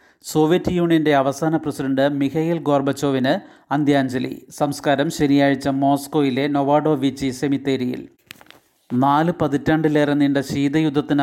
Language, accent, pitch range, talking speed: Malayalam, native, 135-155 Hz, 90 wpm